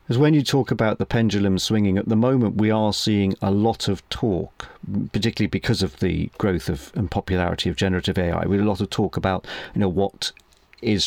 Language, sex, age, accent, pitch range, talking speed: English, male, 40-59, British, 95-110 Hz, 215 wpm